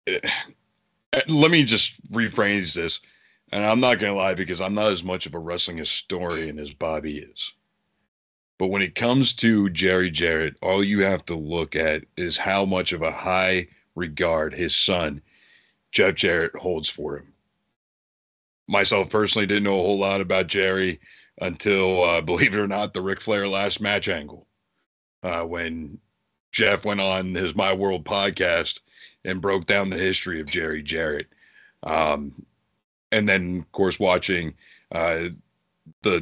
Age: 40-59